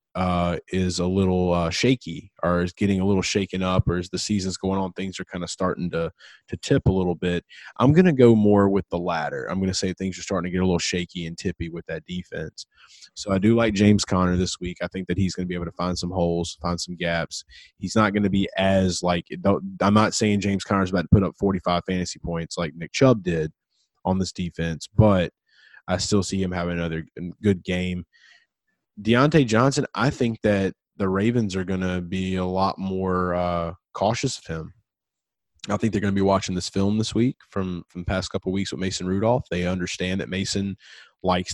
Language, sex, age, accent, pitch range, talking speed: English, male, 20-39, American, 90-100 Hz, 225 wpm